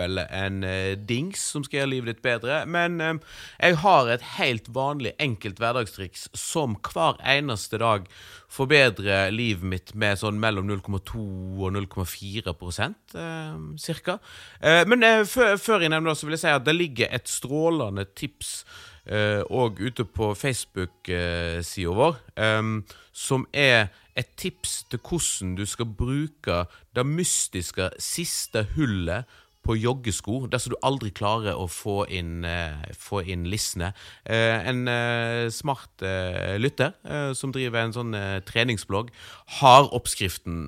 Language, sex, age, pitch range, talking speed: English, male, 30-49, 95-140 Hz, 130 wpm